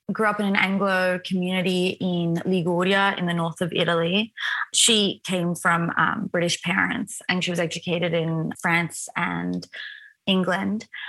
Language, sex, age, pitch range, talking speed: English, female, 20-39, 175-210 Hz, 145 wpm